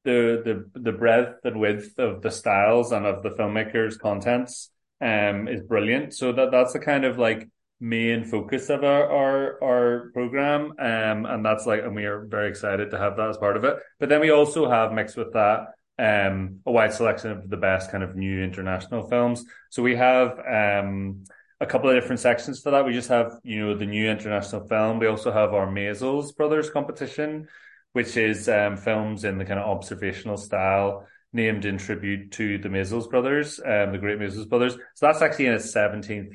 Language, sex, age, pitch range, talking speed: English, male, 20-39, 100-125 Hz, 200 wpm